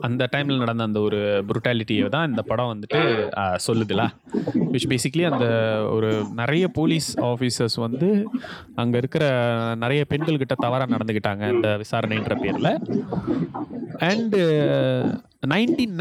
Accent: native